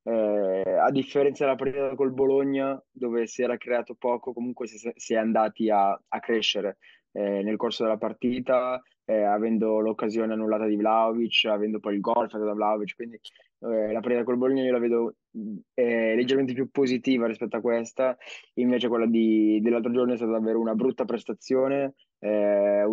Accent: native